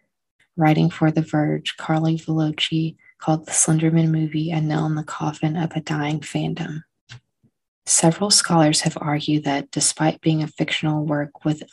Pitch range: 150-165 Hz